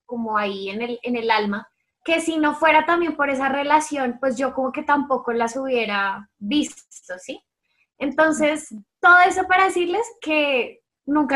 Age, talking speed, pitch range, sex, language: 10-29, 165 wpm, 245-295 Hz, female, Spanish